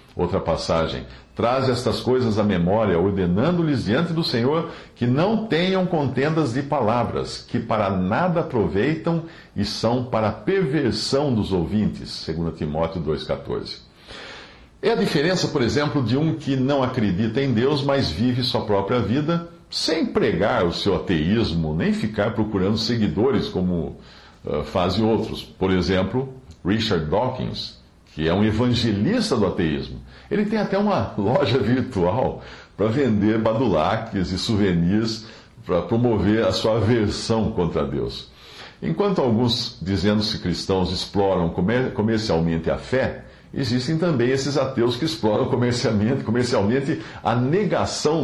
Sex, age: male, 60-79